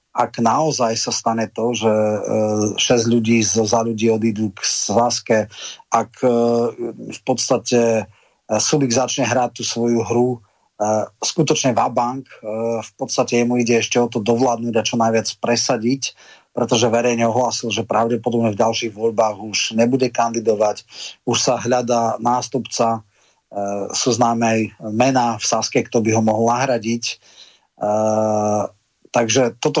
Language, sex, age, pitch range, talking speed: Slovak, male, 30-49, 110-125 Hz, 125 wpm